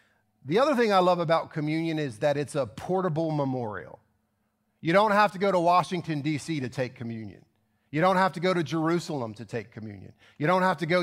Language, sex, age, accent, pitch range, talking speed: English, male, 40-59, American, 135-175 Hz, 210 wpm